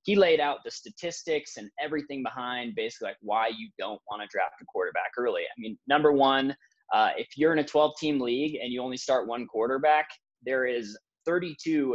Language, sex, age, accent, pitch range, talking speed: English, male, 20-39, American, 120-150 Hz, 200 wpm